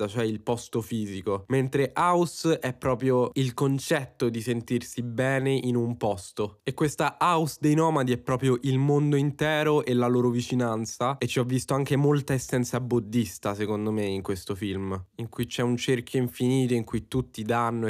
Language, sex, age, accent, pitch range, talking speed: Italian, male, 20-39, native, 110-130 Hz, 180 wpm